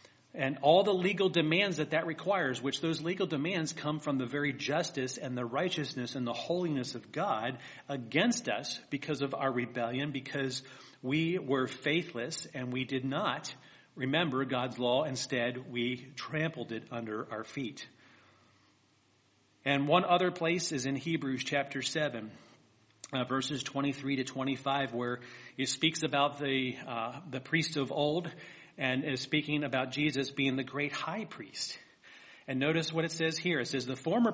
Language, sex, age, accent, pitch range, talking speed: English, male, 40-59, American, 130-155 Hz, 165 wpm